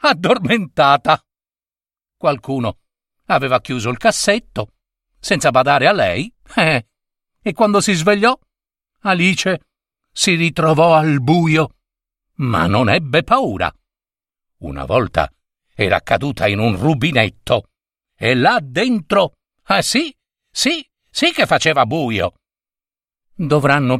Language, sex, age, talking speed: Italian, male, 60-79, 110 wpm